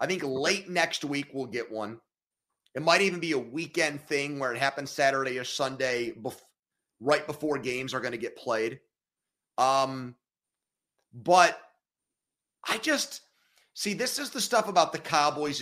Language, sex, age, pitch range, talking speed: English, male, 30-49, 125-165 Hz, 160 wpm